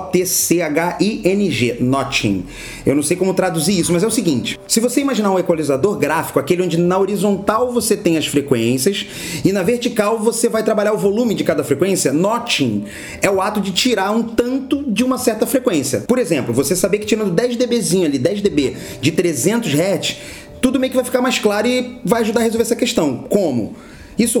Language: English